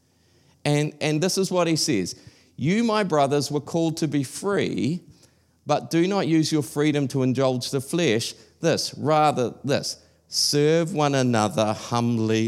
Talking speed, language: 155 wpm, English